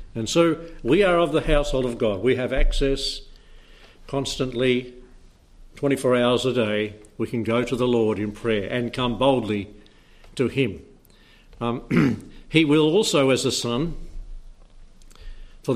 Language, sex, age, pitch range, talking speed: English, male, 60-79, 110-135 Hz, 145 wpm